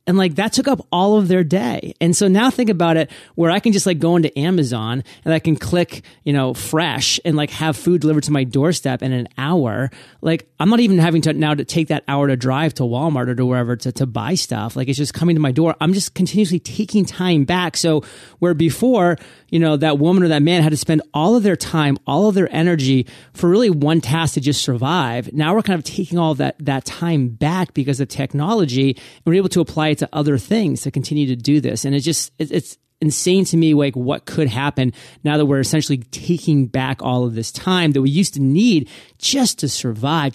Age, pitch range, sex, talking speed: 30-49, 130-165 Hz, male, 240 wpm